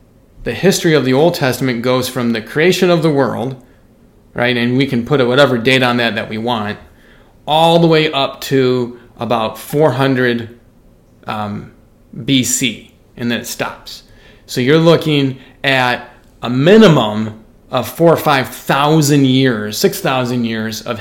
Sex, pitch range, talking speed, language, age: male, 120-155 Hz, 155 wpm, English, 30-49